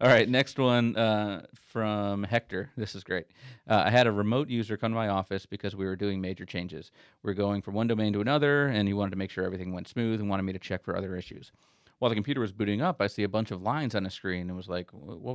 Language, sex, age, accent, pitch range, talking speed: English, male, 30-49, American, 100-115 Hz, 270 wpm